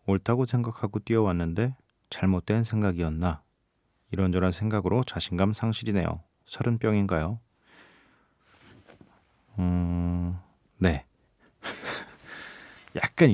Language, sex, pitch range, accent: Korean, male, 90-115 Hz, native